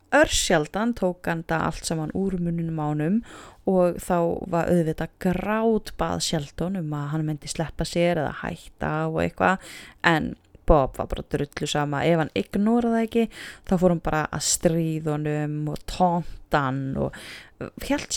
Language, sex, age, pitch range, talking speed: English, female, 20-39, 165-245 Hz, 145 wpm